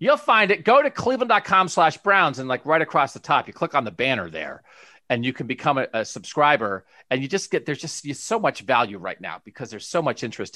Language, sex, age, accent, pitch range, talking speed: English, male, 40-59, American, 120-170 Hz, 245 wpm